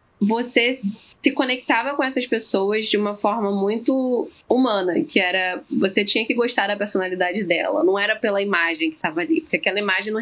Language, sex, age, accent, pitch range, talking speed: Portuguese, female, 10-29, Brazilian, 185-245 Hz, 180 wpm